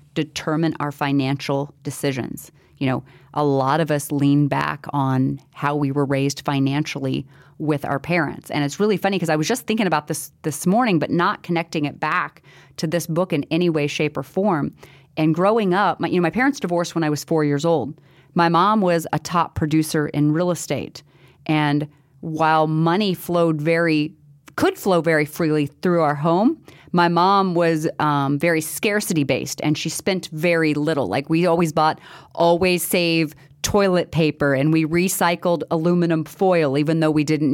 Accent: American